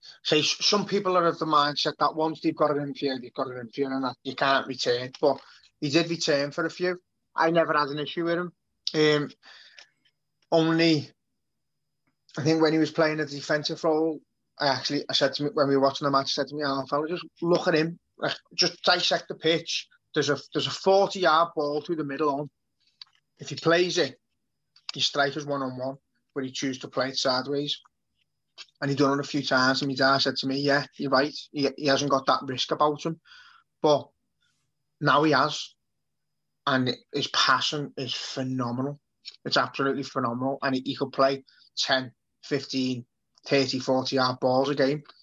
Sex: male